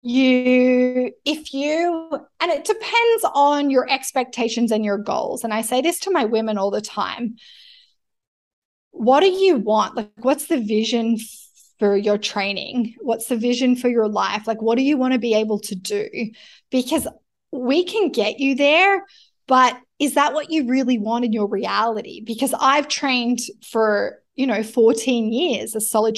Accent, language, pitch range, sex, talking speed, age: Australian, English, 225-285 Hz, female, 170 wpm, 20-39